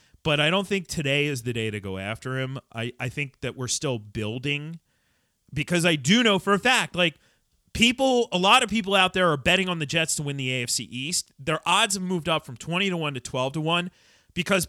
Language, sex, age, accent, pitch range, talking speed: English, male, 40-59, American, 110-170 Hz, 235 wpm